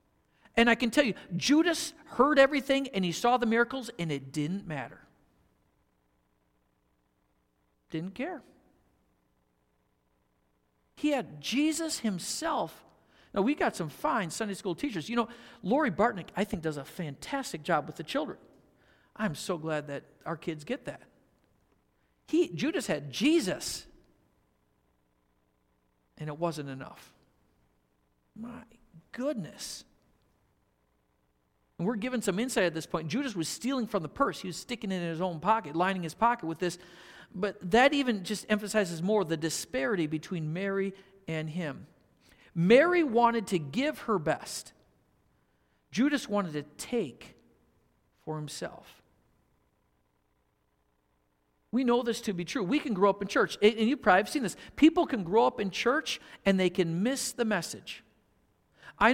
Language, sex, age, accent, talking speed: English, male, 50-69, American, 145 wpm